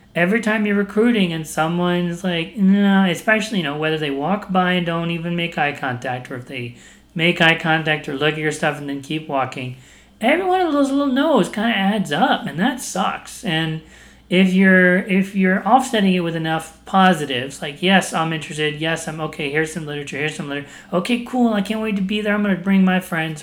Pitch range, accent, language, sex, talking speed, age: 150-195 Hz, American, English, male, 225 wpm, 40-59